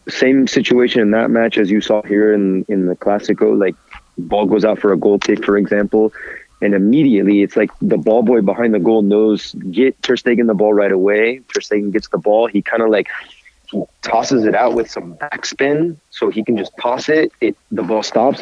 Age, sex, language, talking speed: 30-49, male, English, 220 wpm